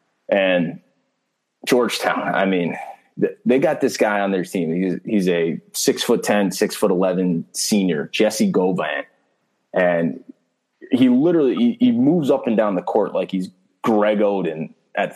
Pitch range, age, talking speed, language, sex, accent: 95-130 Hz, 20-39, 160 wpm, English, male, American